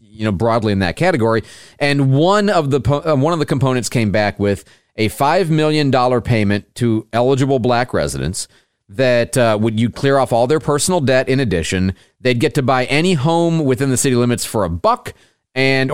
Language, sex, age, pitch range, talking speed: English, male, 40-59, 105-145 Hz, 195 wpm